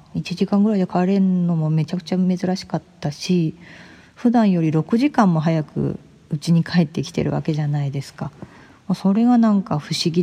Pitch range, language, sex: 155-210 Hz, Japanese, female